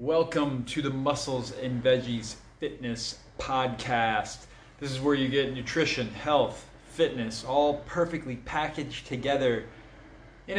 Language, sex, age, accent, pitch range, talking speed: English, male, 30-49, American, 120-150 Hz, 120 wpm